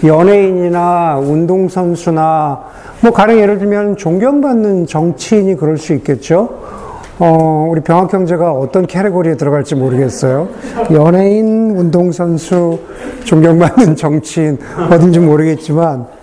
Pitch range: 145-205 Hz